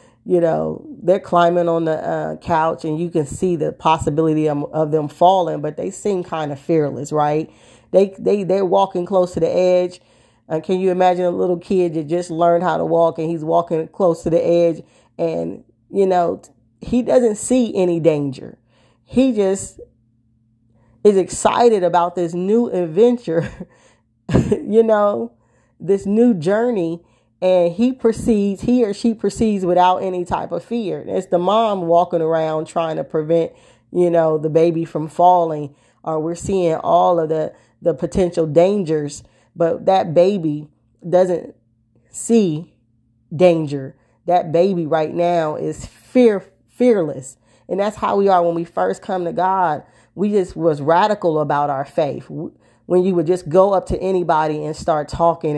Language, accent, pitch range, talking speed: English, American, 155-185 Hz, 165 wpm